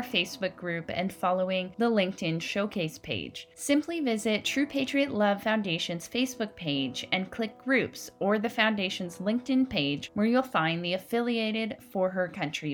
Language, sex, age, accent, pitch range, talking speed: English, female, 10-29, American, 165-235 Hz, 150 wpm